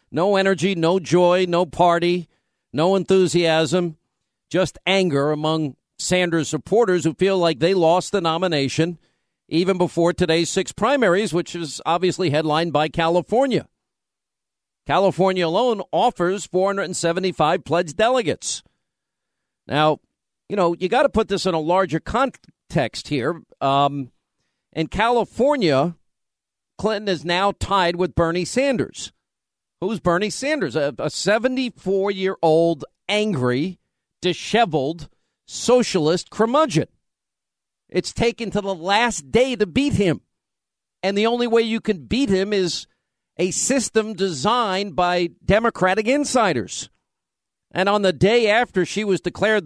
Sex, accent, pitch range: male, American, 170-215 Hz